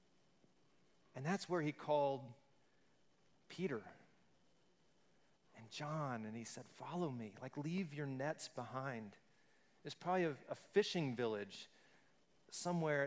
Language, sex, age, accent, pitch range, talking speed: English, male, 40-59, American, 135-180 Hz, 115 wpm